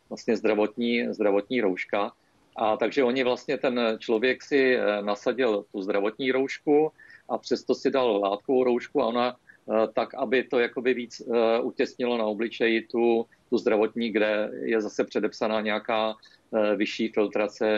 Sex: male